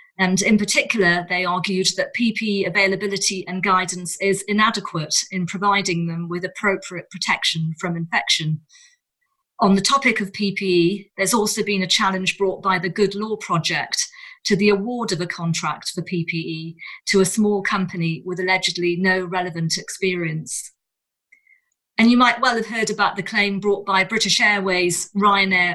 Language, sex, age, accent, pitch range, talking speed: English, female, 40-59, British, 175-210 Hz, 155 wpm